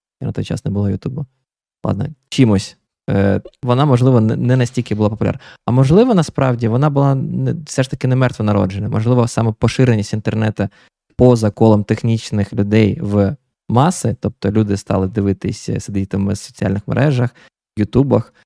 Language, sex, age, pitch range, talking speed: Ukrainian, male, 20-39, 105-125 Hz, 145 wpm